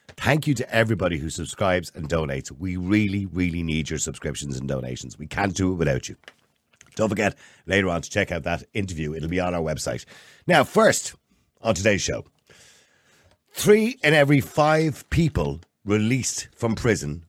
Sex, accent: male, British